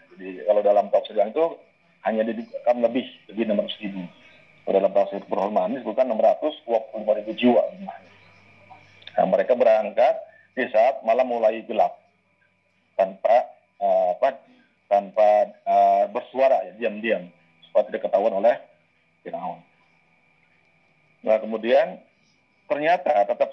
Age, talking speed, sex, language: 40-59, 115 wpm, male, Malay